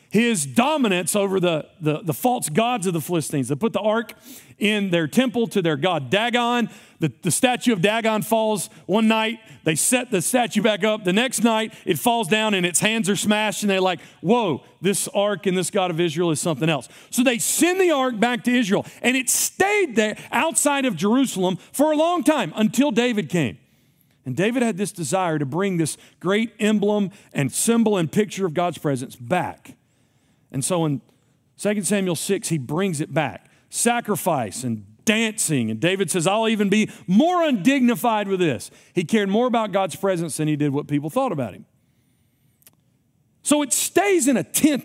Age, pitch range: 40-59, 160-230 Hz